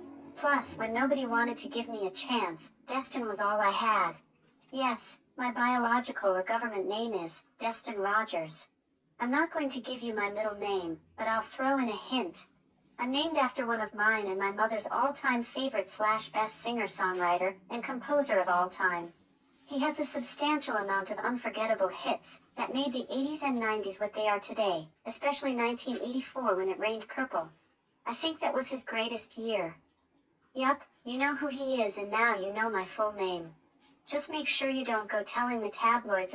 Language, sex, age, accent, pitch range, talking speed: English, male, 40-59, American, 205-265 Hz, 180 wpm